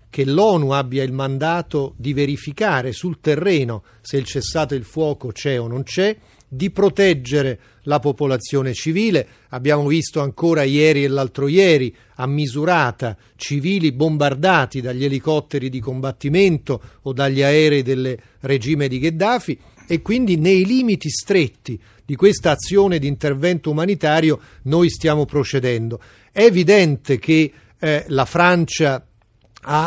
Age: 40-59